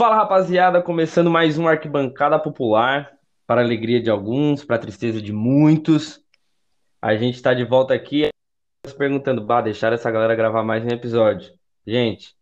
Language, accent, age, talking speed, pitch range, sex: Portuguese, Brazilian, 20-39, 160 wpm, 115-145 Hz, male